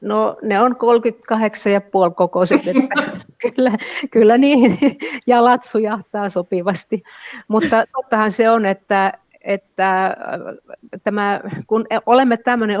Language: Finnish